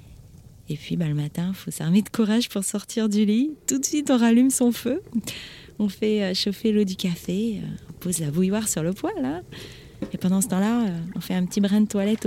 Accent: French